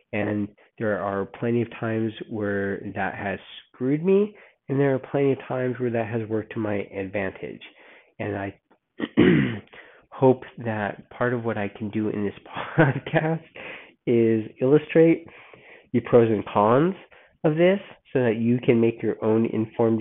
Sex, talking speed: male, 160 wpm